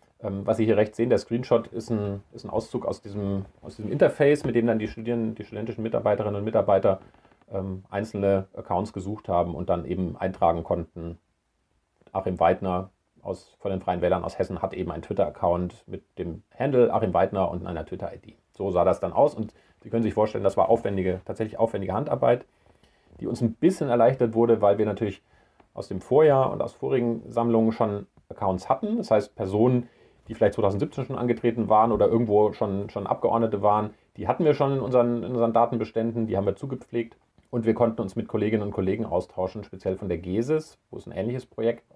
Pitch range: 95-120 Hz